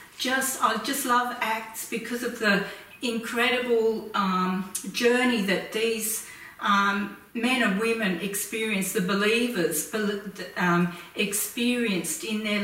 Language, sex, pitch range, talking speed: English, female, 200-235 Hz, 110 wpm